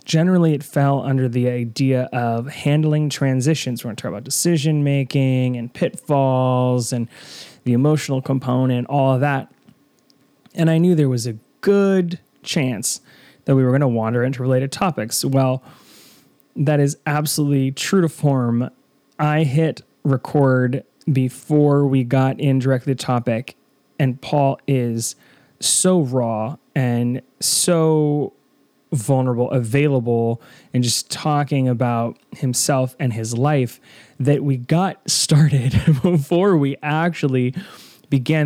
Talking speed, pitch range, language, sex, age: 130 wpm, 125-160 Hz, English, male, 20-39